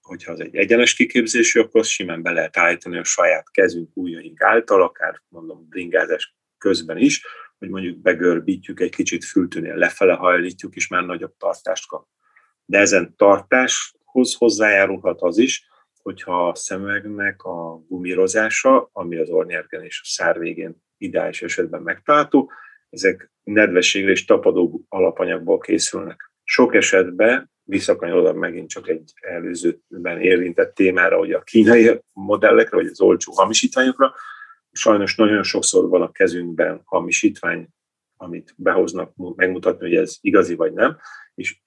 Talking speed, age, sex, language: 130 wpm, 30-49, male, Hungarian